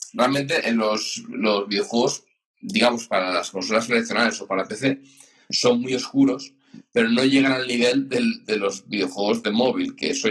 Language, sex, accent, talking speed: Spanish, male, Spanish, 170 wpm